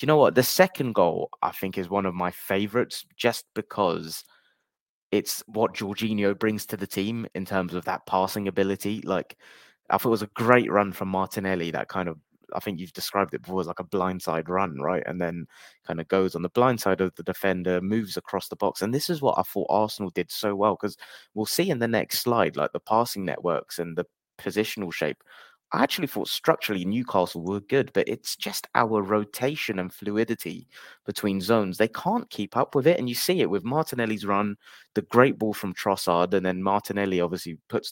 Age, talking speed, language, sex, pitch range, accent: 20-39, 210 wpm, English, male, 95-110 Hz, British